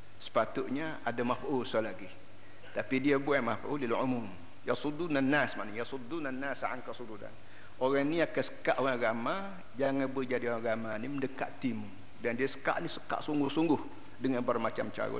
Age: 50-69